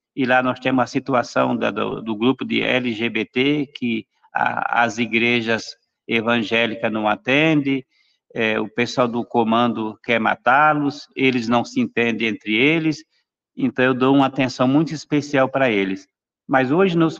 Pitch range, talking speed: 115-145 Hz, 155 wpm